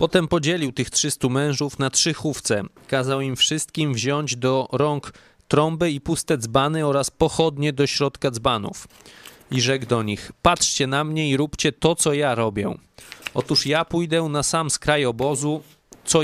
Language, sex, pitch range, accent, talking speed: Polish, male, 130-155 Hz, native, 165 wpm